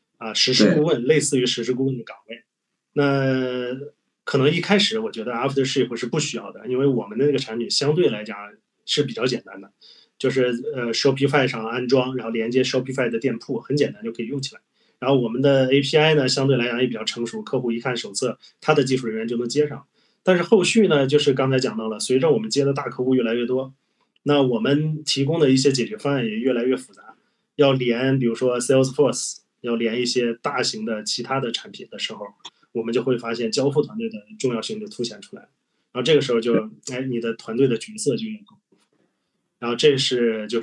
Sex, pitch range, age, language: male, 120-150 Hz, 20-39, Chinese